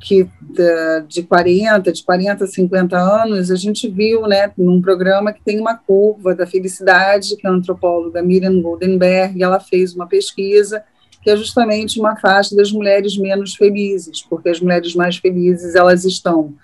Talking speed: 170 wpm